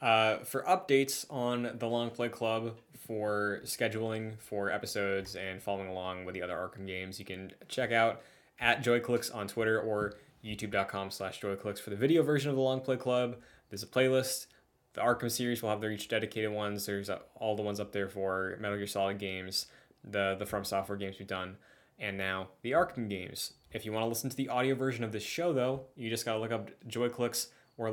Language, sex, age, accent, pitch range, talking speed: English, male, 20-39, American, 105-120 Hz, 200 wpm